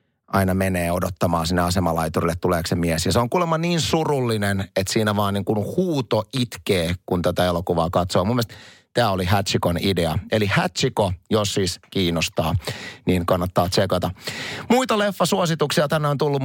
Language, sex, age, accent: Finnish, male, 30-49, native